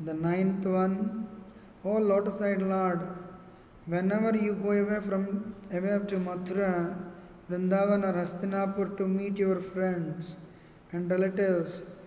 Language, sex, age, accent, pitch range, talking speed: English, male, 20-39, Indian, 185-200 Hz, 125 wpm